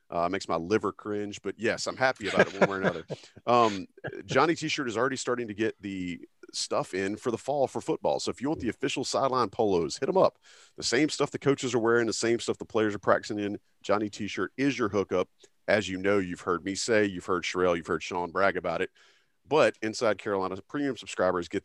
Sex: male